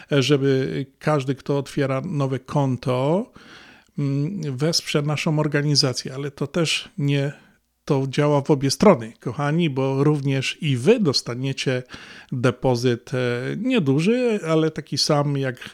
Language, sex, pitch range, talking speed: Polish, male, 130-150 Hz, 110 wpm